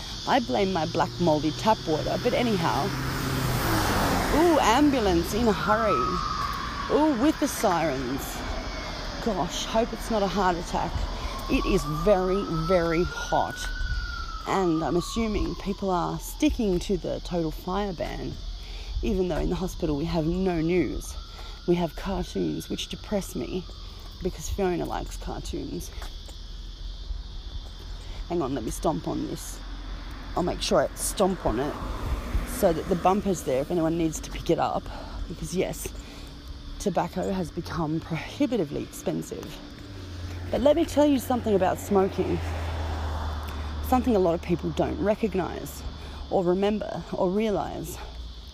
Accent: Australian